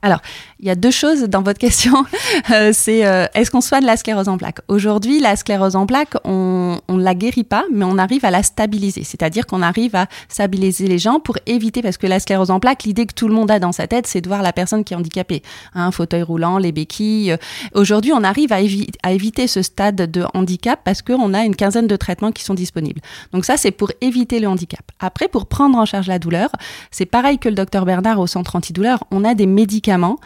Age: 30-49